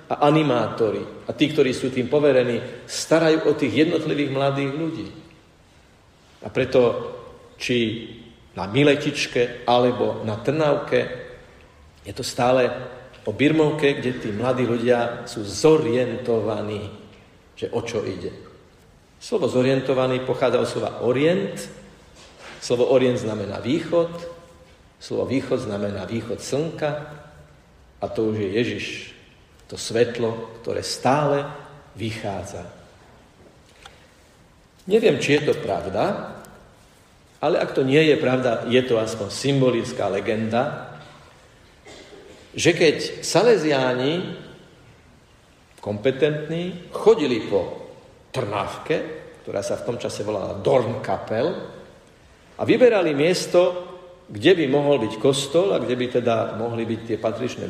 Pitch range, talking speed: 115-155 Hz, 110 wpm